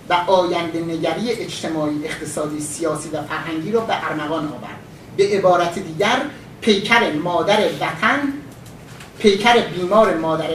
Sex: male